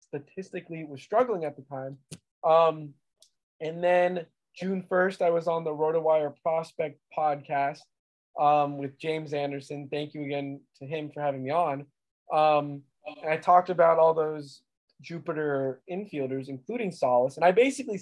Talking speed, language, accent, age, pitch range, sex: 145 wpm, English, American, 20-39, 150-185 Hz, male